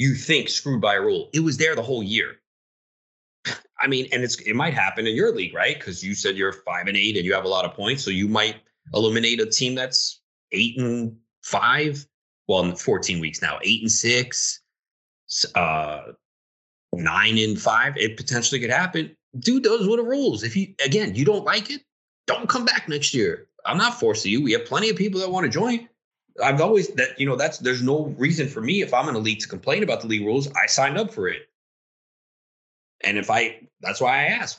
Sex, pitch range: male, 110-165 Hz